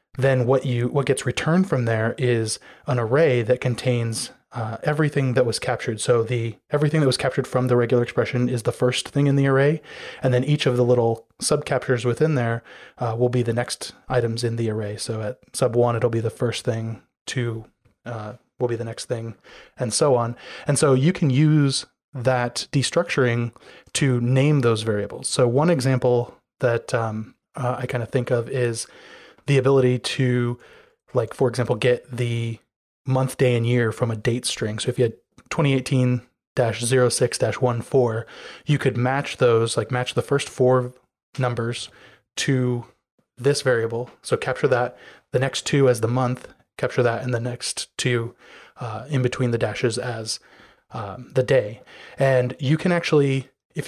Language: English